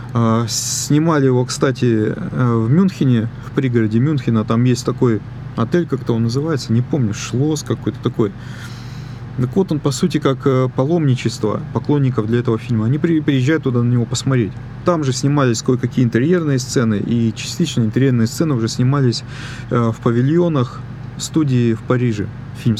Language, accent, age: Russian, native, 30-49